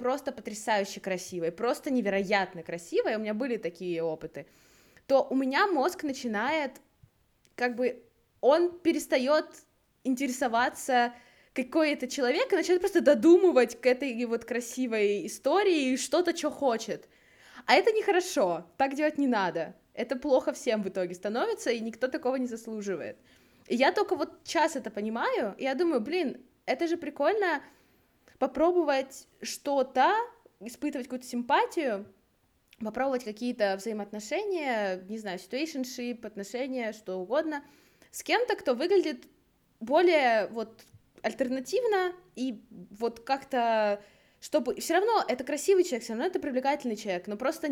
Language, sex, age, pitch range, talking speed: Russian, female, 20-39, 225-310 Hz, 130 wpm